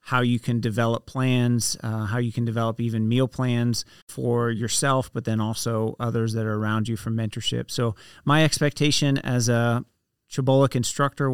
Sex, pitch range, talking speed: male, 115-130 Hz, 170 wpm